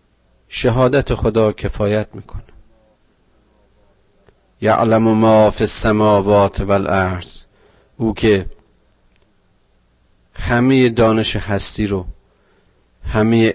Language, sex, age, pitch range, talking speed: Persian, male, 40-59, 100-130 Hz, 80 wpm